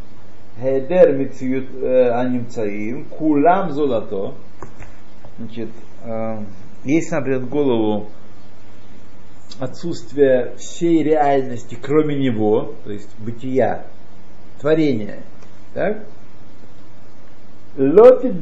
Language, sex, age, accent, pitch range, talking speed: Russian, male, 50-69, native, 105-155 Hz, 40 wpm